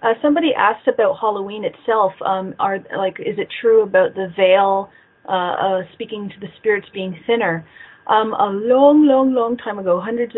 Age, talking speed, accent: 30-49, 180 wpm, American